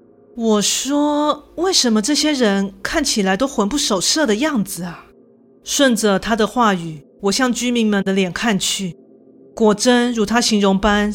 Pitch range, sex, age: 195-245 Hz, female, 30-49